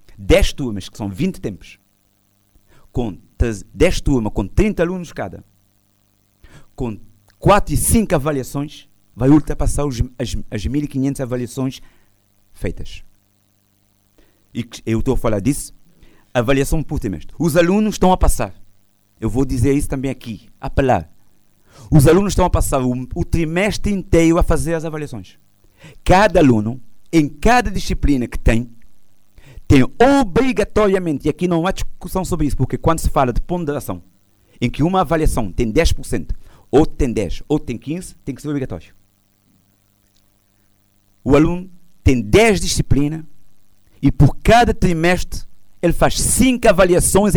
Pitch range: 100-155 Hz